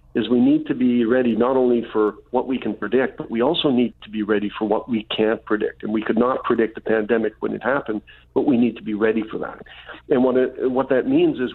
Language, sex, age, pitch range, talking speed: English, male, 50-69, 110-130 Hz, 260 wpm